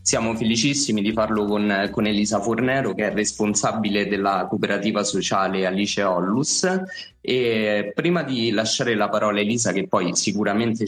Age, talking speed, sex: 20-39, 145 wpm, male